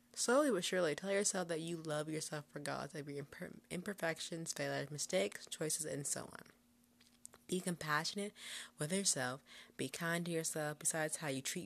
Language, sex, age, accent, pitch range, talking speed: English, female, 20-39, American, 145-180 Hz, 160 wpm